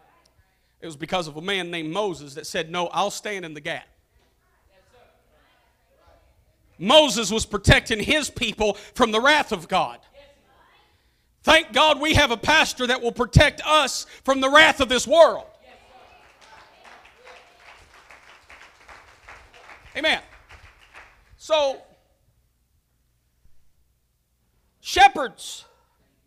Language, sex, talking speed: English, male, 105 wpm